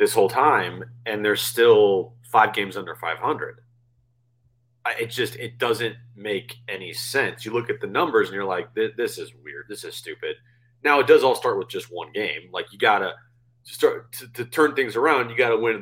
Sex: male